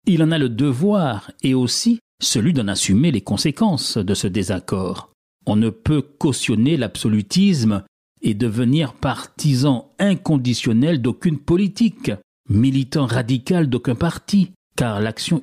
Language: French